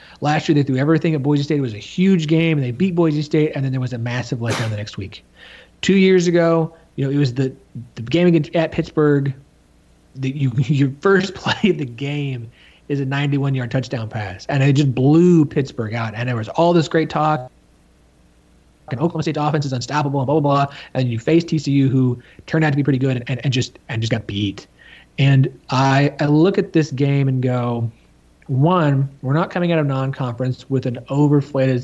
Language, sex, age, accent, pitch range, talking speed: English, male, 30-49, American, 120-155 Hz, 215 wpm